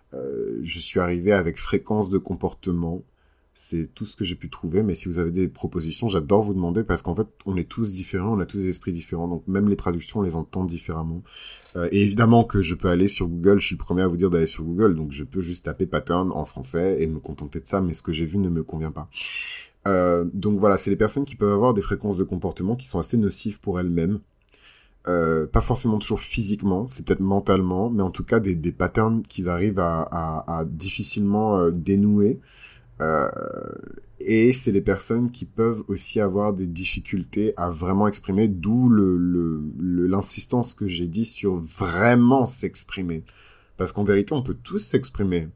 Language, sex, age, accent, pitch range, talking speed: French, male, 30-49, French, 85-105 Hz, 210 wpm